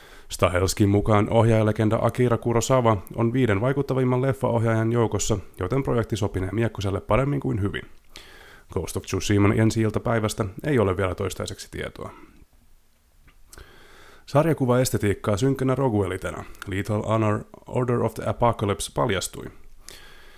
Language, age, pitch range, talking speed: Finnish, 30-49, 100-120 Hz, 105 wpm